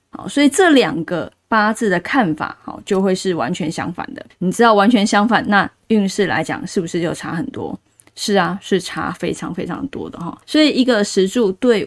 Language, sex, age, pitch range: Chinese, female, 20-39, 185-250 Hz